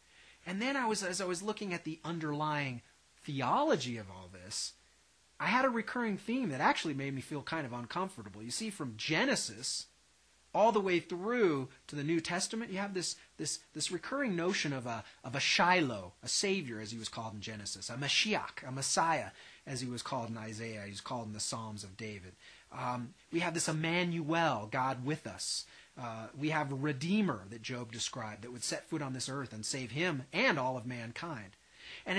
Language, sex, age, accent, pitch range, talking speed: English, male, 30-49, American, 120-175 Hz, 205 wpm